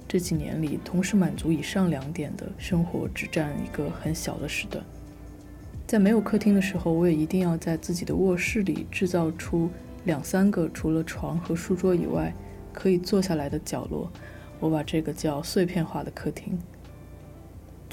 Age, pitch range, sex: 20-39, 155-185 Hz, female